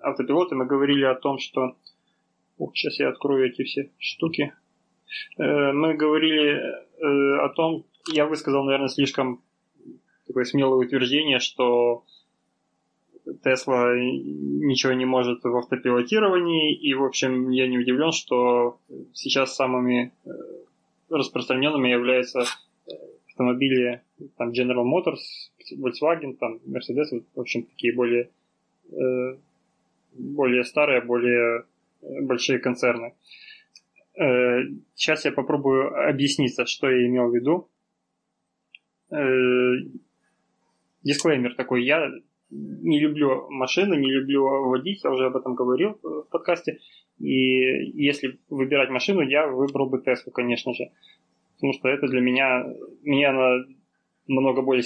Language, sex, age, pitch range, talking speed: Russian, male, 20-39, 125-140 Hz, 110 wpm